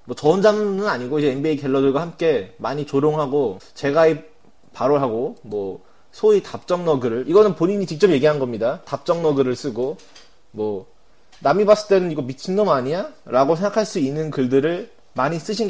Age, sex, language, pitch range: 20-39, male, Korean, 120-165 Hz